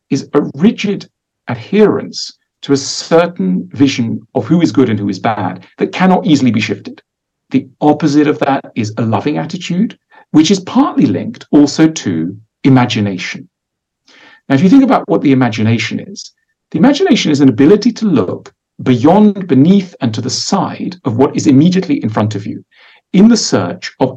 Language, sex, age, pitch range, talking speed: German, male, 50-69, 135-215 Hz, 175 wpm